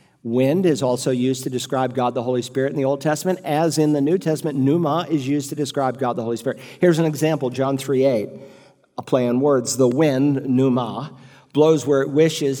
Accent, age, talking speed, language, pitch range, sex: American, 50-69, 215 wpm, English, 130-160 Hz, male